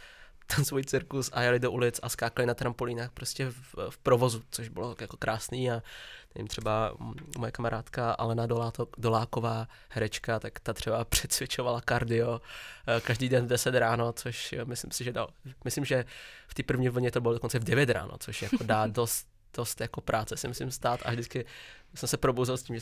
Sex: male